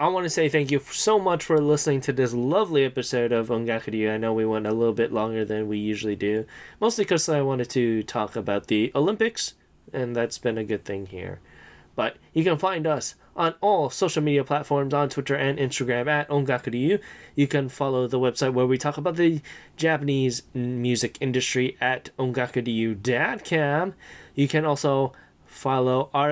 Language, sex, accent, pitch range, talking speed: English, male, American, 120-150 Hz, 180 wpm